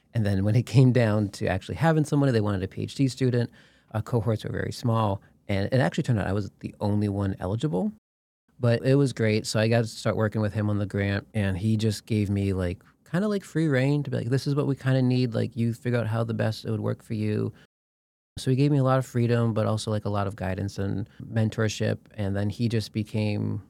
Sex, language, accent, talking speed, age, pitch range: male, English, American, 255 wpm, 30-49, 105-130 Hz